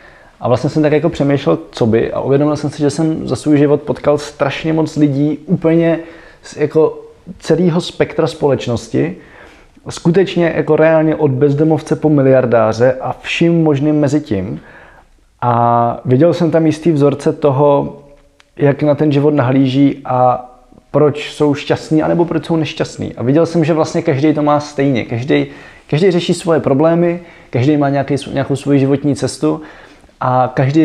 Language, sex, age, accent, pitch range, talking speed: Czech, male, 20-39, native, 130-155 Hz, 155 wpm